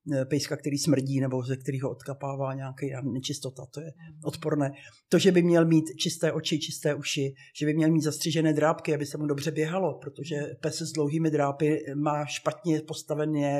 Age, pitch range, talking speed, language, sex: 50-69, 145-160 Hz, 175 wpm, Czech, male